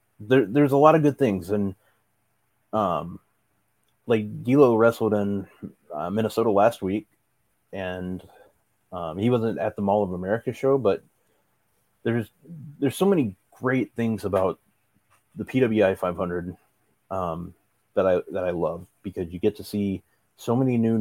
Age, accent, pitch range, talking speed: 30-49, American, 95-120 Hz, 150 wpm